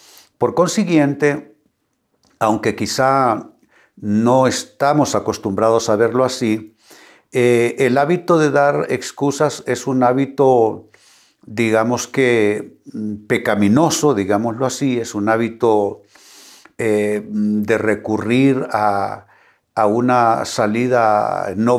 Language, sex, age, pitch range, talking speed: Spanish, male, 60-79, 105-130 Hz, 95 wpm